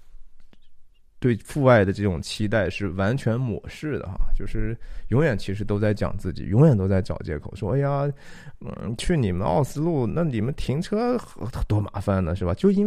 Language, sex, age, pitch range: Chinese, male, 20-39, 95-140 Hz